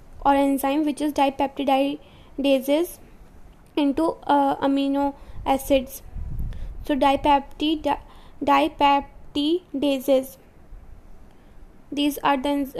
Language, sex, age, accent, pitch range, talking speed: English, female, 20-39, Indian, 275-290 Hz, 70 wpm